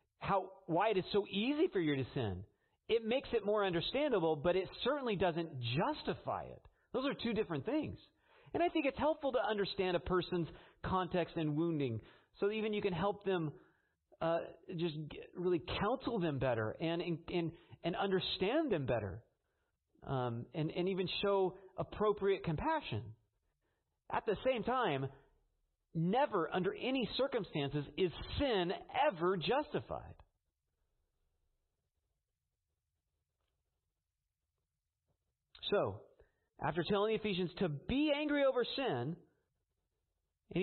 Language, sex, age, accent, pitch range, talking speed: English, male, 40-59, American, 135-205 Hz, 125 wpm